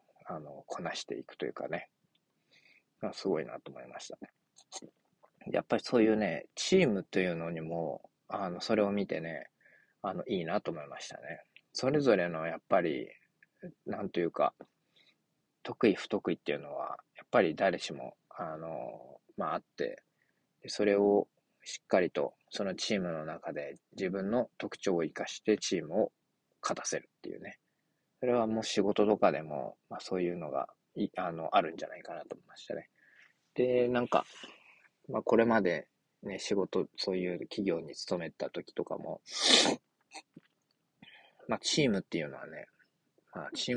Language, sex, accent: Japanese, male, native